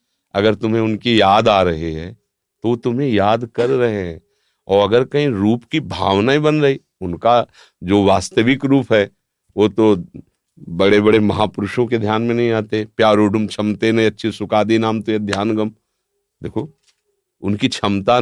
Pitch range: 95-115 Hz